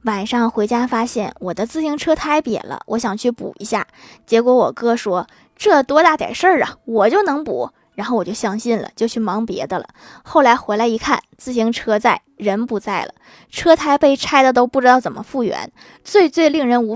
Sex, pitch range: female, 220-280 Hz